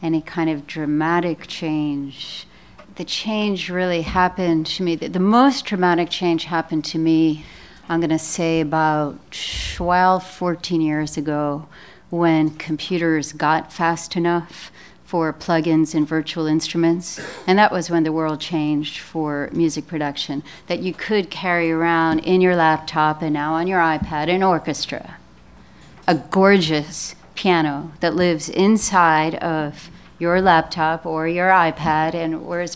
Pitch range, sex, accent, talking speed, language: 160-190 Hz, female, American, 140 wpm, English